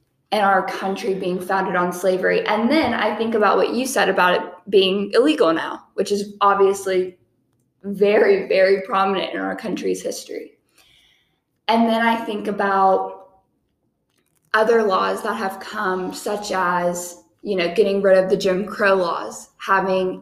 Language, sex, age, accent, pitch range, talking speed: English, female, 10-29, American, 190-225 Hz, 155 wpm